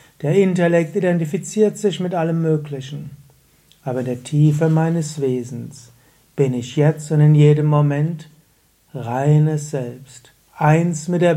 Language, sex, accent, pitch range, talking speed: German, male, German, 140-170 Hz, 130 wpm